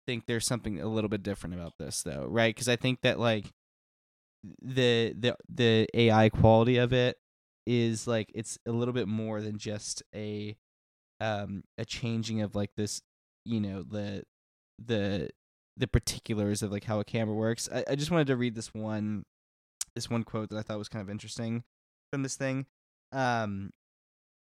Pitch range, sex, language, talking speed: 105-125 Hz, male, English, 180 wpm